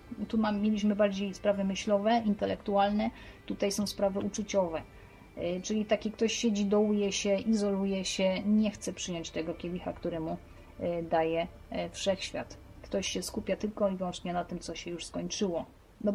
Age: 30-49